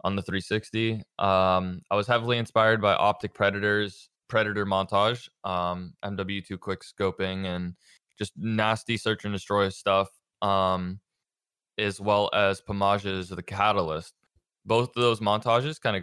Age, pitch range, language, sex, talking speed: 20-39, 95-110 Hz, English, male, 140 wpm